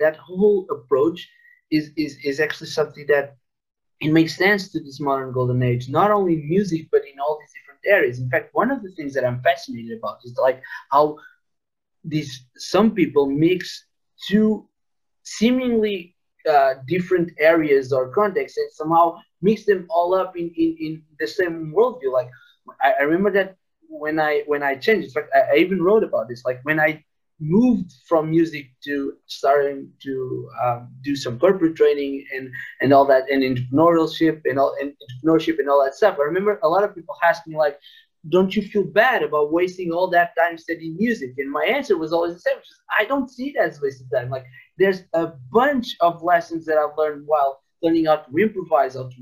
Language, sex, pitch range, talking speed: English, male, 145-205 Hz, 195 wpm